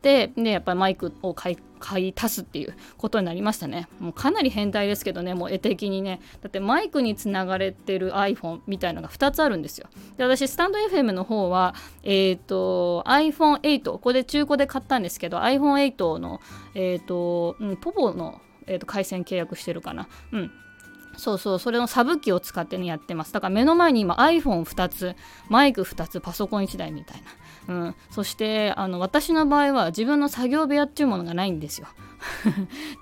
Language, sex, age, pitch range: Japanese, female, 20-39, 180-245 Hz